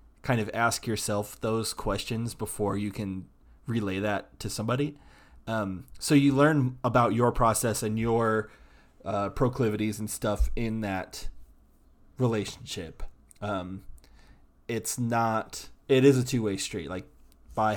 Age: 20-39